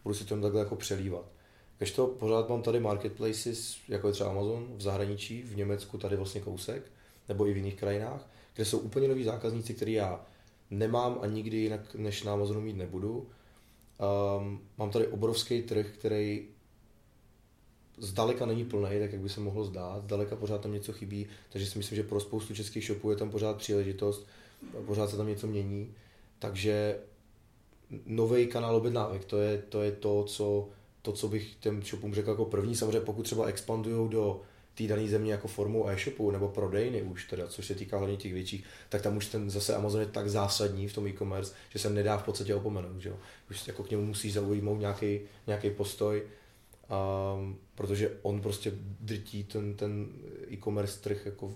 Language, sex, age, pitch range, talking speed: Czech, male, 20-39, 100-110 Hz, 185 wpm